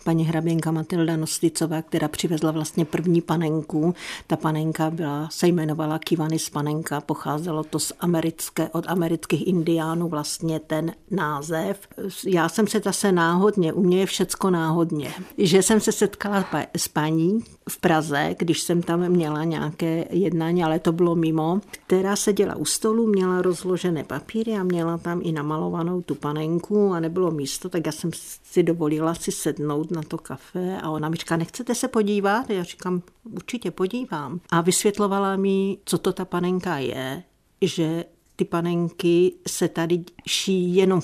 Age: 50-69